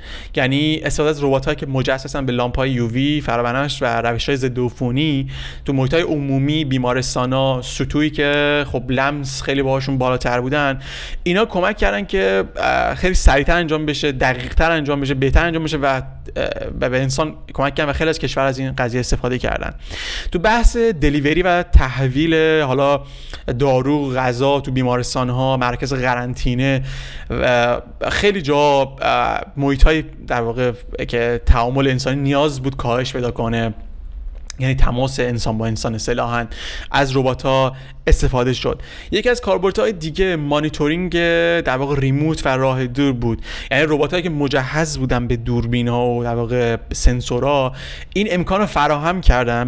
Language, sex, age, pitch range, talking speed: Persian, male, 30-49, 125-145 Hz, 150 wpm